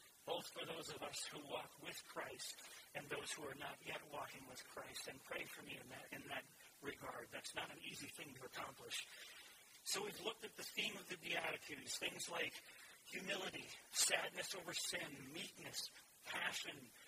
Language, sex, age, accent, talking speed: English, male, 40-59, American, 180 wpm